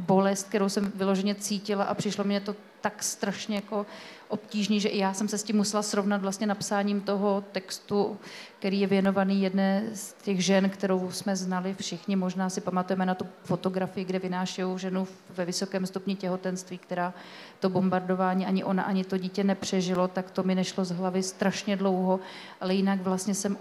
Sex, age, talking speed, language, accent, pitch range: female, 30-49, 180 wpm, Czech, native, 190-205 Hz